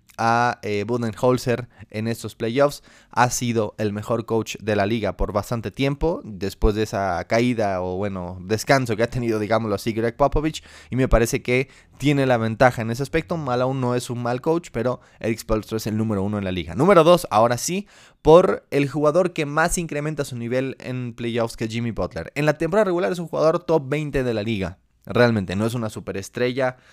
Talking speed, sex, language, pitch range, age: 200 wpm, male, Spanish, 110-145 Hz, 20-39